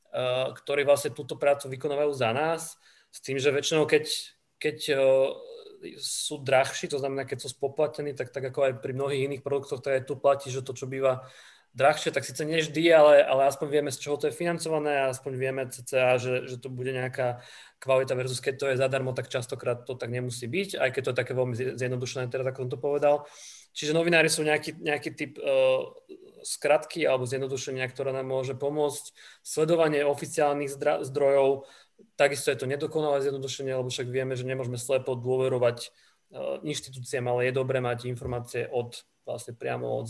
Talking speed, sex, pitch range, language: 185 wpm, male, 130-150 Hz, Slovak